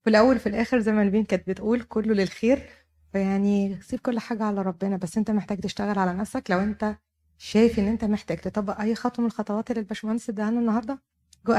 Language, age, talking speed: Arabic, 30-49, 205 wpm